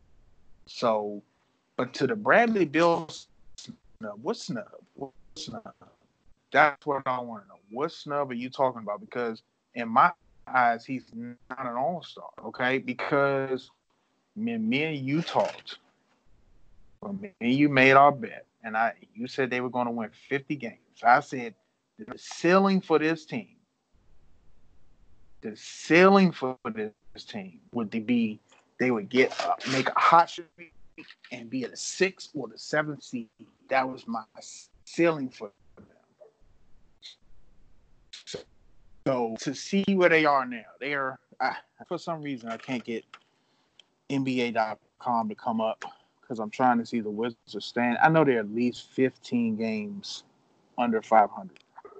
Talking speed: 150 wpm